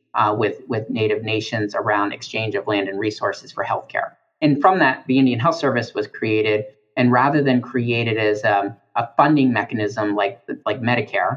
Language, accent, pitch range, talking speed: English, American, 110-135 Hz, 180 wpm